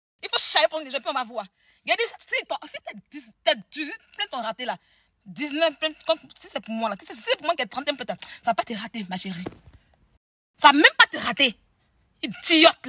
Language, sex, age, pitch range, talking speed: English, female, 30-49, 270-380 Hz, 235 wpm